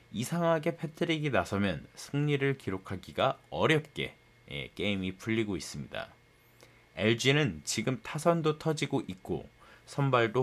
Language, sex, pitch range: Korean, male, 100-135 Hz